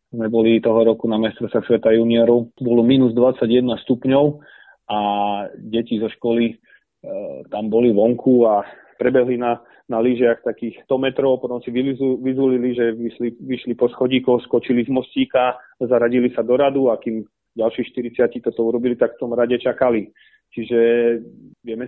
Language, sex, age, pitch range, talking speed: Slovak, male, 30-49, 110-125 Hz, 155 wpm